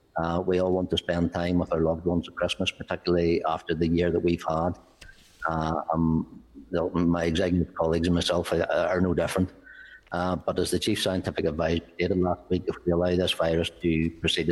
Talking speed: 200 wpm